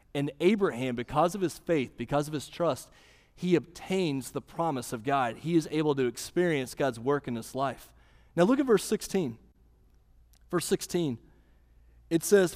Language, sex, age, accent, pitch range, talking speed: English, male, 30-49, American, 120-180 Hz, 165 wpm